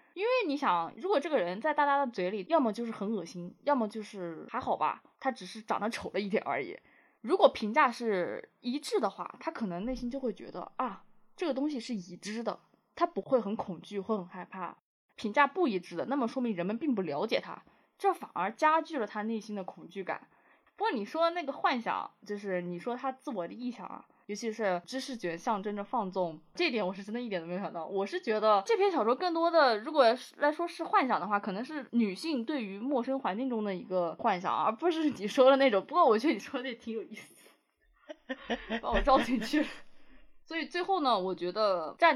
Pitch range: 200-290 Hz